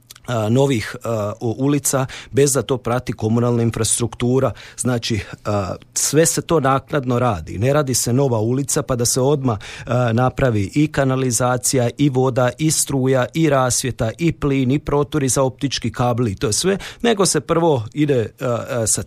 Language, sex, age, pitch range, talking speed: Croatian, male, 40-59, 115-140 Hz, 150 wpm